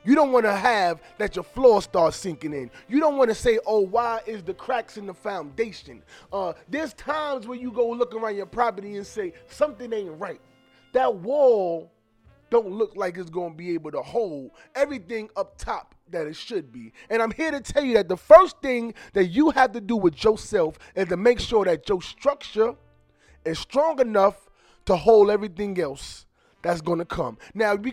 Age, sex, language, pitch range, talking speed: 20-39, male, English, 195-270 Hz, 205 wpm